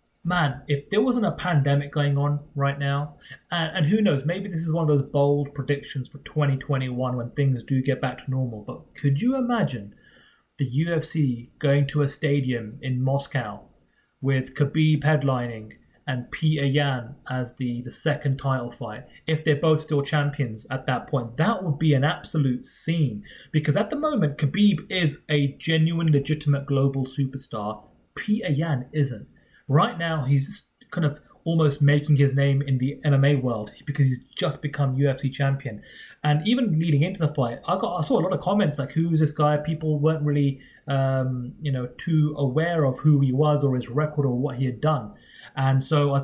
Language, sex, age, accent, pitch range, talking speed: English, male, 30-49, British, 135-150 Hz, 185 wpm